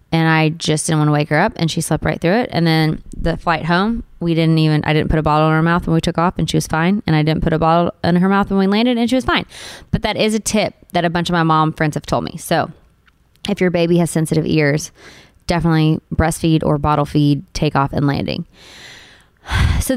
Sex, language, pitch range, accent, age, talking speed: female, English, 165-225 Hz, American, 20-39, 260 wpm